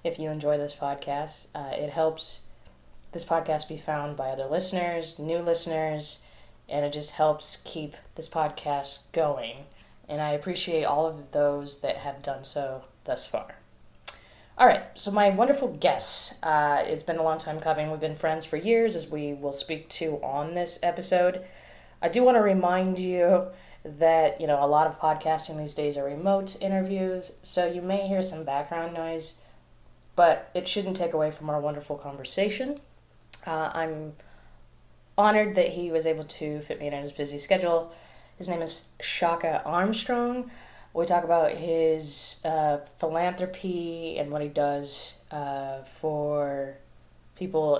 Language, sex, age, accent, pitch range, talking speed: English, female, 10-29, American, 145-175 Hz, 165 wpm